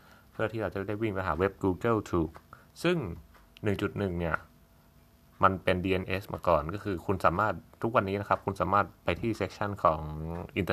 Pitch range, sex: 85-105 Hz, male